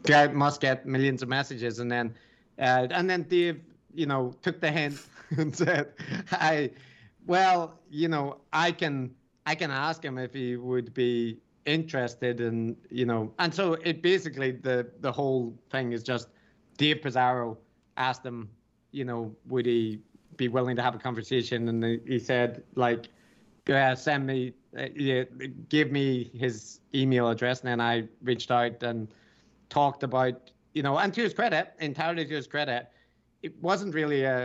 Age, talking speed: 30-49, 170 wpm